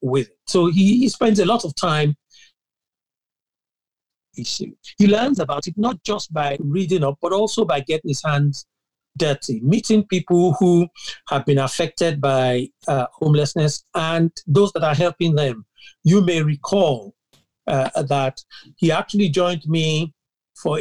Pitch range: 145-195 Hz